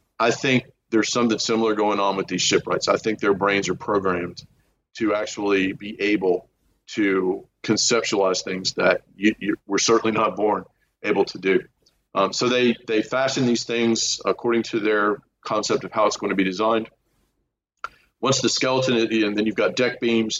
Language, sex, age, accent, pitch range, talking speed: English, male, 40-59, American, 100-115 Hz, 175 wpm